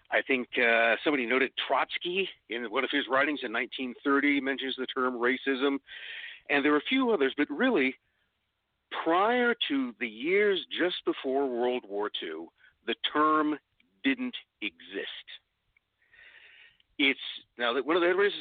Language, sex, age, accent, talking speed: English, male, 50-69, American, 145 wpm